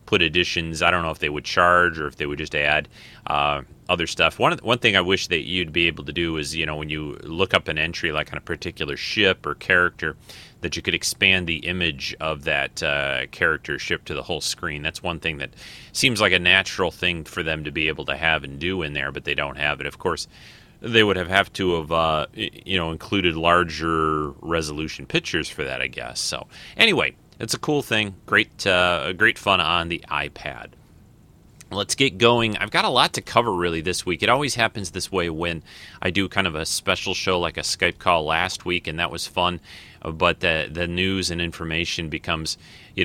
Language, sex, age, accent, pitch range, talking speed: English, male, 30-49, American, 80-95 Hz, 225 wpm